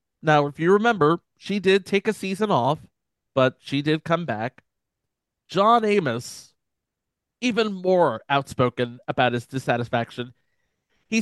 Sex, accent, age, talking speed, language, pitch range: male, American, 30-49, 130 wpm, English, 140-200 Hz